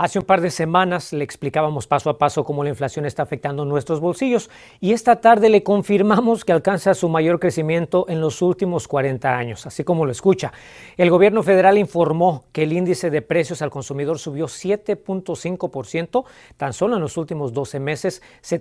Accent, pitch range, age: Mexican, 150-190 Hz, 40-59